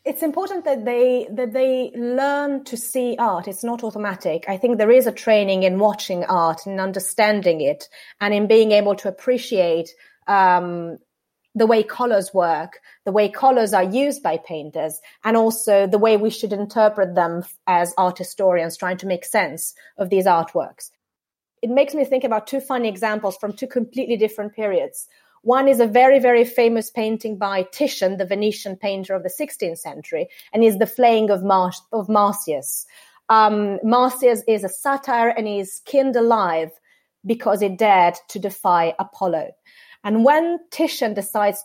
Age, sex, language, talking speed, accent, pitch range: 30-49, female, English, 170 wpm, French, 195-250 Hz